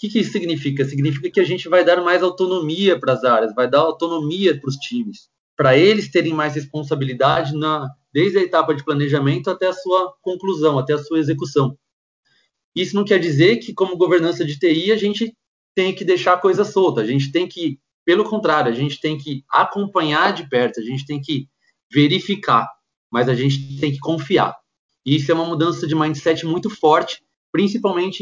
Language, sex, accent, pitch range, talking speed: Portuguese, male, Brazilian, 145-185 Hz, 195 wpm